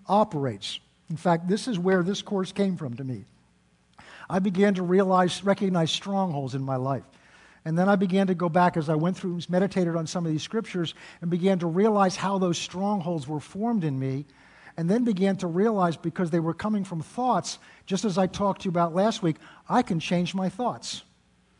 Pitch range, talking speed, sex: 165-210 Hz, 210 wpm, male